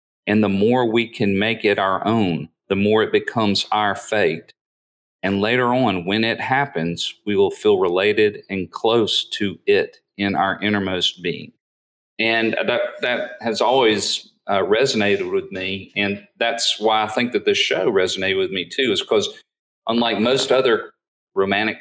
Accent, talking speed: American, 165 wpm